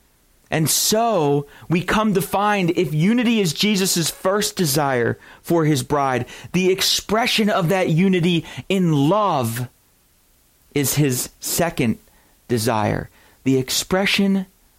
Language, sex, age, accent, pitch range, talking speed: English, male, 40-59, American, 155-200 Hz, 115 wpm